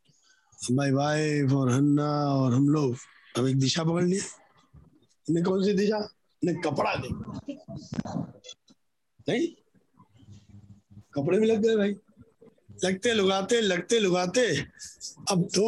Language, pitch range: Hindi, 140-210 Hz